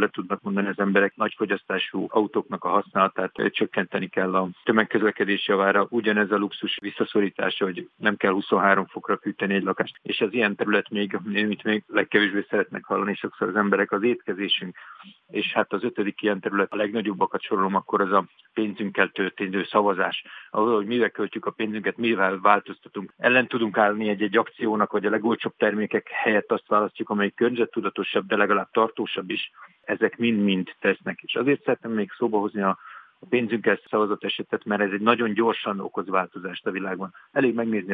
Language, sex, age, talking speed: Hungarian, male, 50-69, 170 wpm